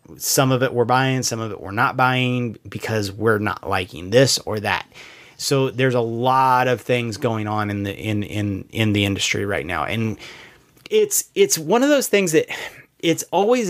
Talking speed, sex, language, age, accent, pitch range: 195 wpm, male, English, 30-49, American, 115-150 Hz